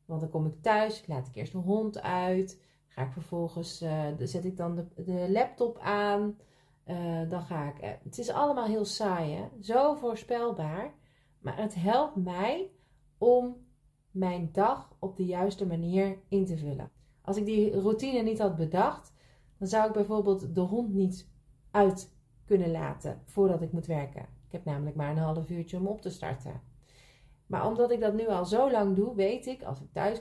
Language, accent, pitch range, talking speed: Dutch, Dutch, 145-205 Hz, 190 wpm